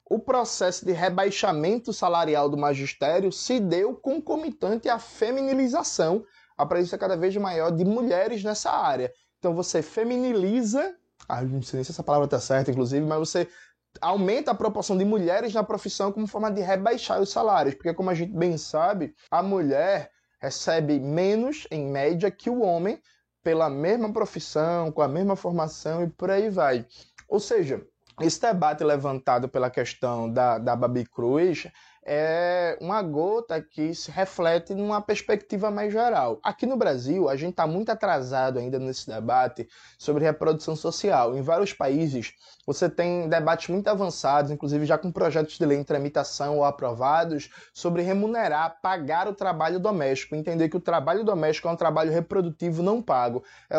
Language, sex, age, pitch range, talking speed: Portuguese, male, 20-39, 150-210 Hz, 165 wpm